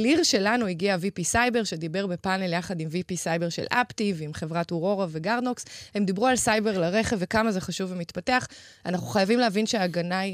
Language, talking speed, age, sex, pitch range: Hebrew, 175 wpm, 20-39, female, 175-220 Hz